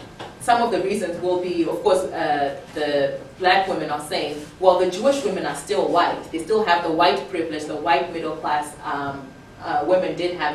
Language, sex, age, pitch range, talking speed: English, female, 20-39, 165-210 Hz, 200 wpm